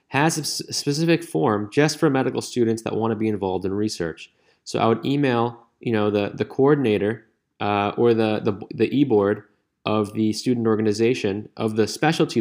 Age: 20-39